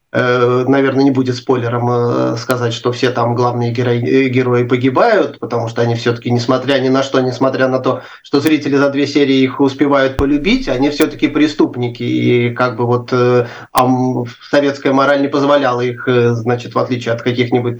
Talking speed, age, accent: 160 wpm, 30-49, native